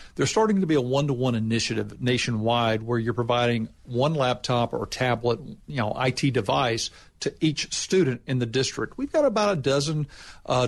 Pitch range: 120-140 Hz